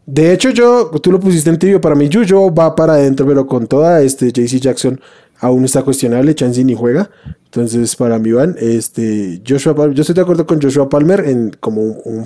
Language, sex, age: Spanish, male, 20-39